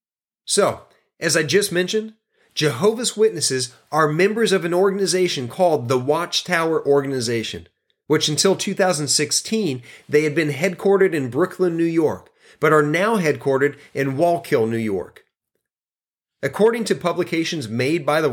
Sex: male